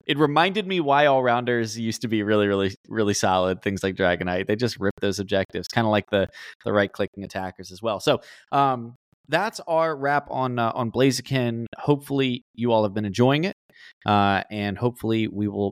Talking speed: 200 wpm